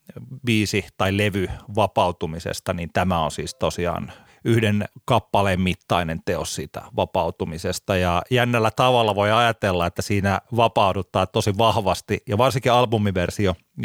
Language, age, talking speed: Finnish, 30-49, 120 wpm